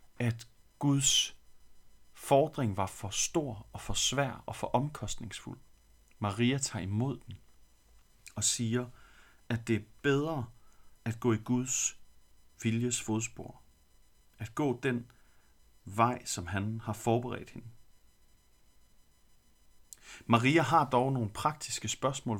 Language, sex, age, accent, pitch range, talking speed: Danish, male, 40-59, native, 100-125 Hz, 115 wpm